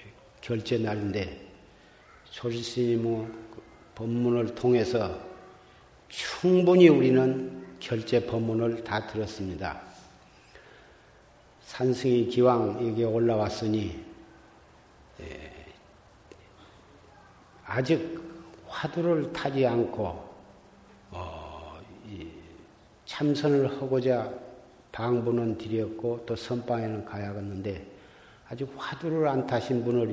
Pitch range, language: 105-130 Hz, Korean